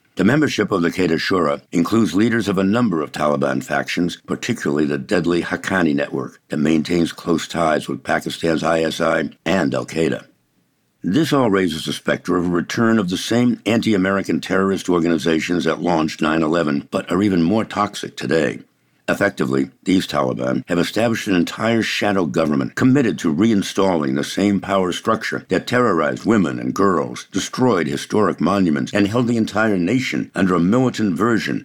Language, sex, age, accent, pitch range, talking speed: English, male, 60-79, American, 80-105 Hz, 160 wpm